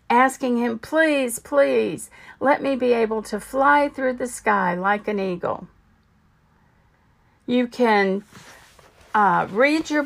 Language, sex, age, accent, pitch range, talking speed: English, female, 50-69, American, 210-285 Hz, 125 wpm